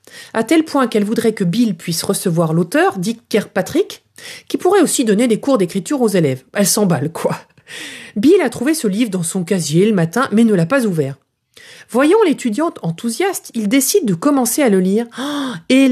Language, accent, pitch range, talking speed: French, French, 180-265 Hz, 190 wpm